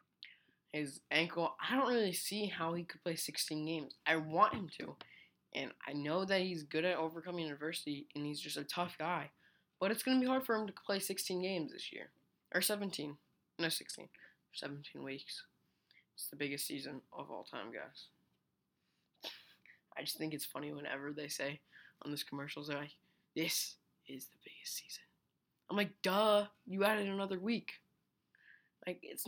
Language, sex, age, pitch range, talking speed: English, female, 20-39, 145-185 Hz, 175 wpm